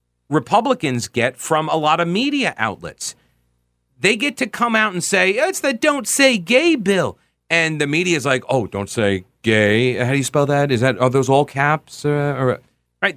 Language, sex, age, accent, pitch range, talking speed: English, male, 40-59, American, 120-190 Hz, 195 wpm